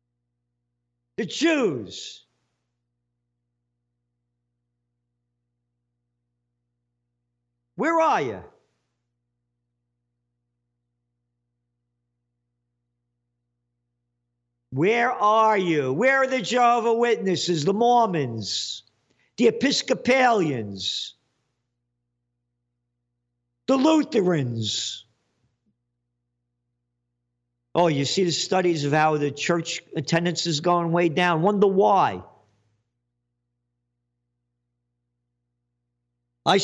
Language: English